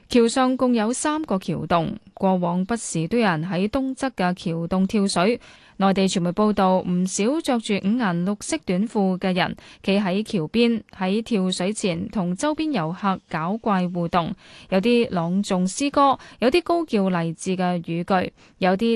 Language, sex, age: Chinese, female, 10-29